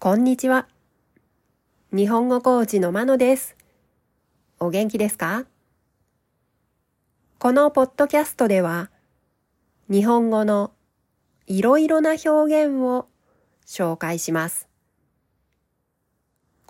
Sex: female